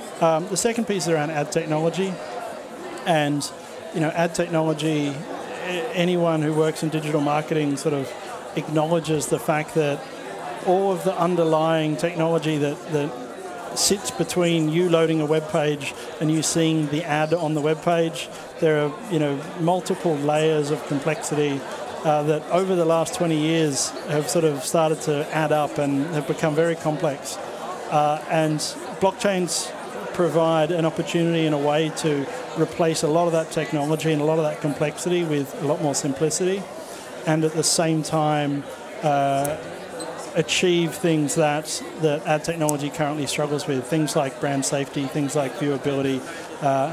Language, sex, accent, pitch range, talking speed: Swedish, male, Australian, 145-165 Hz, 160 wpm